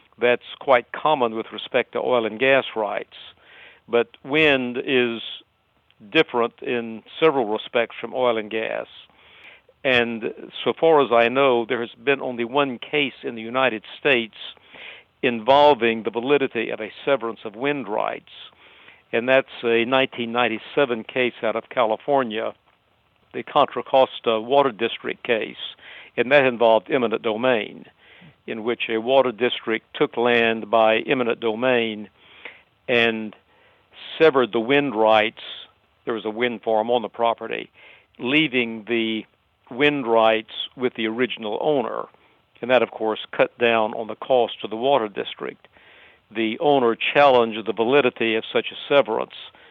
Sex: male